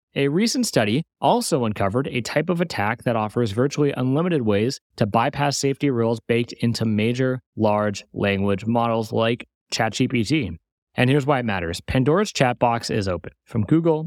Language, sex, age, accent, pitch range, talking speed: English, male, 30-49, American, 115-150 Hz, 160 wpm